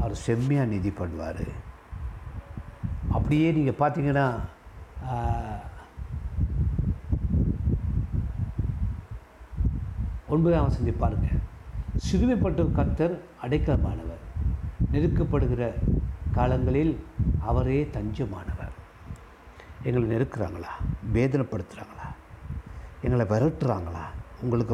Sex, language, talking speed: male, Tamil, 55 wpm